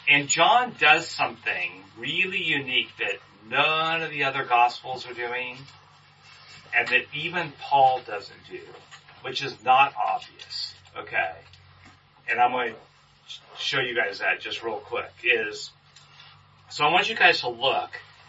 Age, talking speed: 40-59, 145 wpm